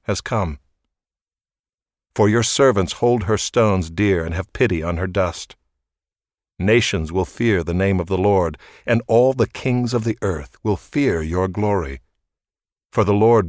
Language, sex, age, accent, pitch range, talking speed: English, male, 60-79, American, 85-110 Hz, 165 wpm